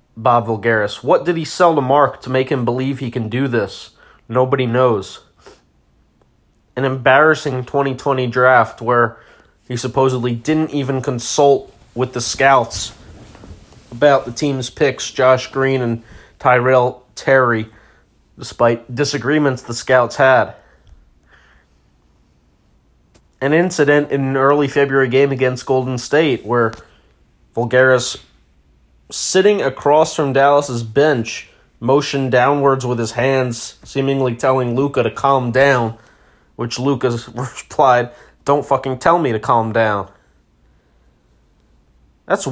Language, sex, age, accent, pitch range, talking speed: English, male, 30-49, American, 115-140 Hz, 120 wpm